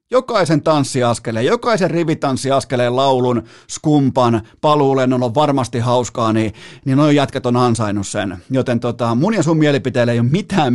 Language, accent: Finnish, native